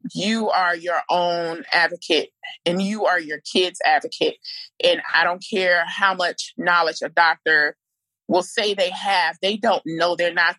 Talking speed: 165 wpm